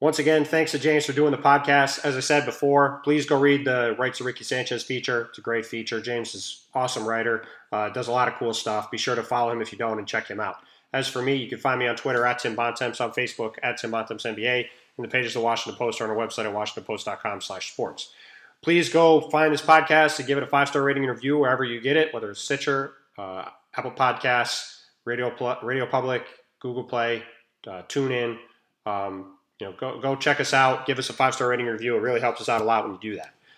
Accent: American